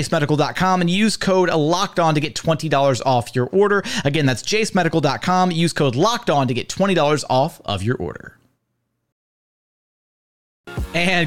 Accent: American